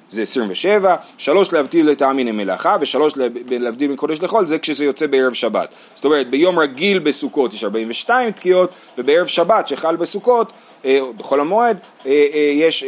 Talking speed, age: 155 wpm, 30-49